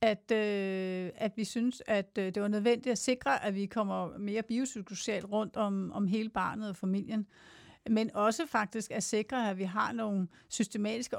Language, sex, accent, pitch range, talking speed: Danish, female, native, 200-235 Hz, 170 wpm